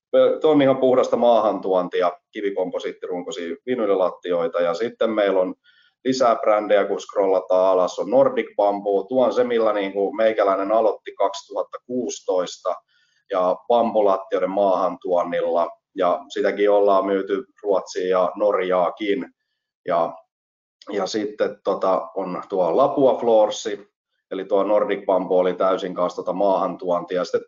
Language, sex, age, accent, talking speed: Finnish, male, 30-49, native, 125 wpm